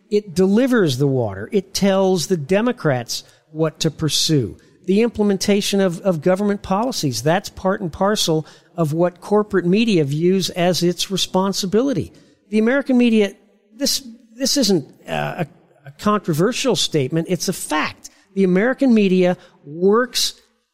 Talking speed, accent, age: 135 wpm, American, 50-69